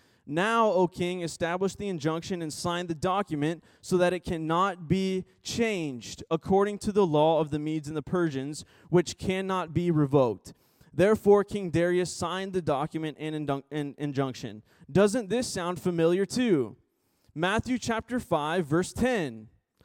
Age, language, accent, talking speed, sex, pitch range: 20-39, English, American, 145 wpm, male, 165-210 Hz